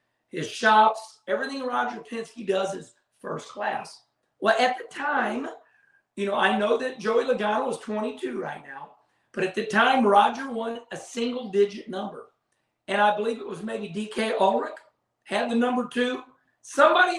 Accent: American